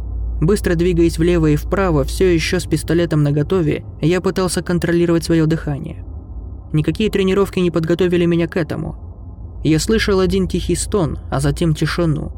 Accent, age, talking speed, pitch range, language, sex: native, 20-39, 145 wpm, 140-185 Hz, Russian, male